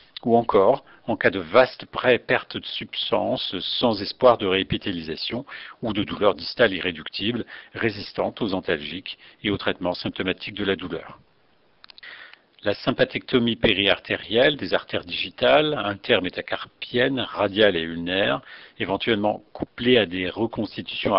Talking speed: 125 wpm